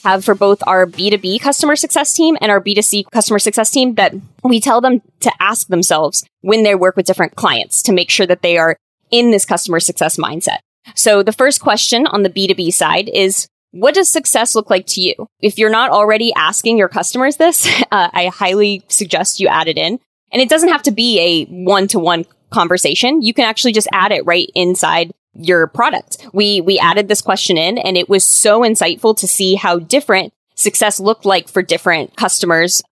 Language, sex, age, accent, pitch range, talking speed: English, female, 20-39, American, 185-235 Hz, 200 wpm